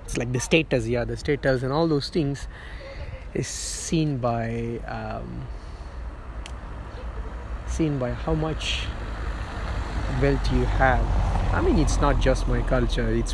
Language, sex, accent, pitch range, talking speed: English, male, Indian, 80-135 Hz, 130 wpm